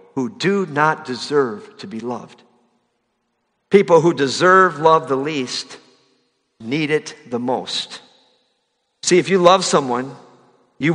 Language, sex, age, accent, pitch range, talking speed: English, male, 50-69, American, 145-230 Hz, 125 wpm